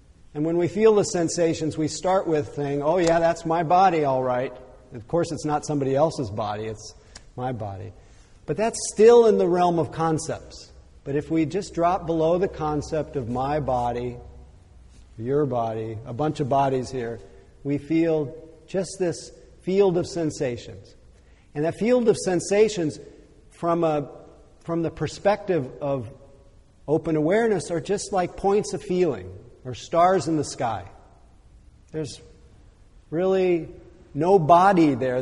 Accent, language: American, English